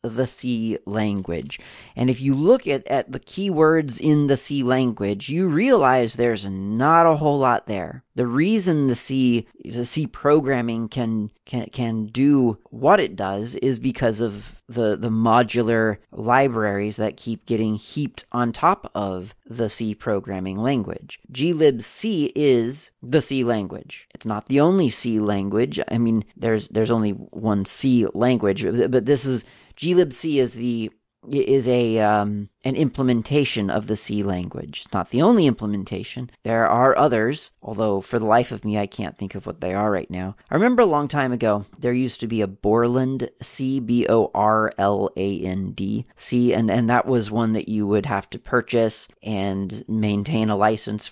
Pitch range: 105-130 Hz